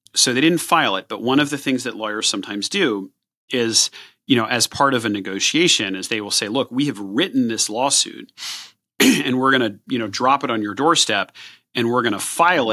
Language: English